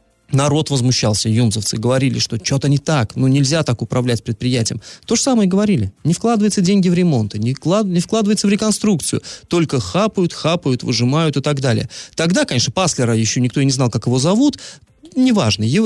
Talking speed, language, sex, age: 165 wpm, Russian, male, 30-49